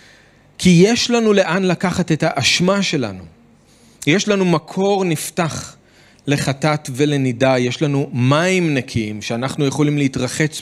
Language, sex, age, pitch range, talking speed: Hebrew, male, 40-59, 140-200 Hz, 120 wpm